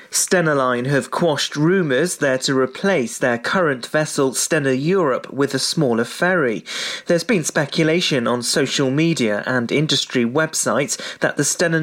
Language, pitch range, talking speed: English, 125-160 Hz, 145 wpm